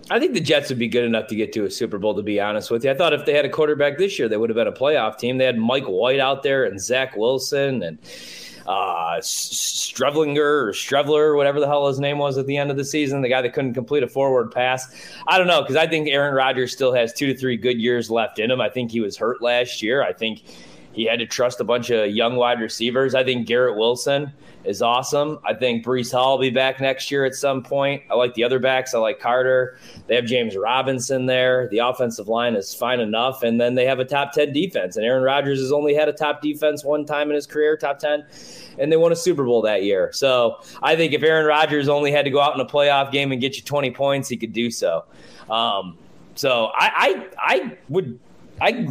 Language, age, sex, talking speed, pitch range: English, 30-49, male, 250 wpm, 120-145 Hz